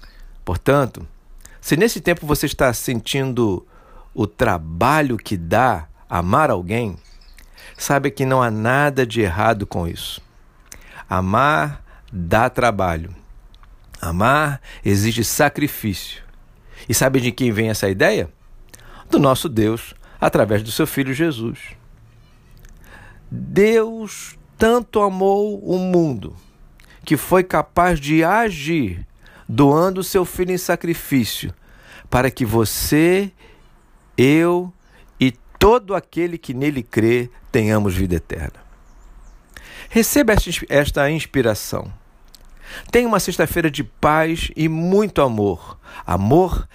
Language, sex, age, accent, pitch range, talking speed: Portuguese, male, 60-79, Brazilian, 105-170 Hz, 110 wpm